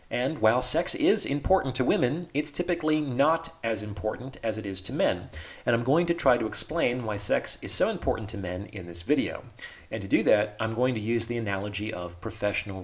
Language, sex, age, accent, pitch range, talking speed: English, male, 40-59, American, 105-135 Hz, 215 wpm